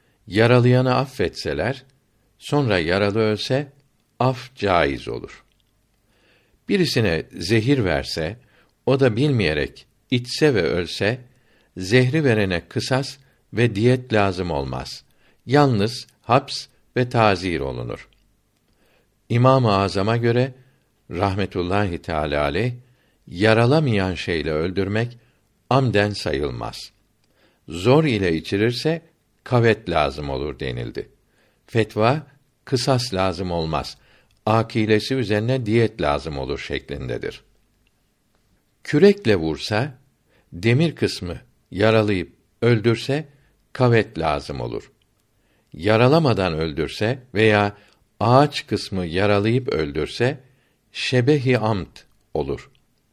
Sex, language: male, Turkish